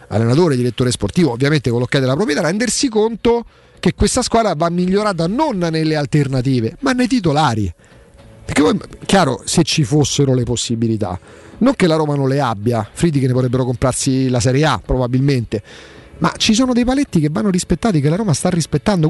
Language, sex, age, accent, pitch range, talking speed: Italian, male, 40-59, native, 135-200 Hz, 180 wpm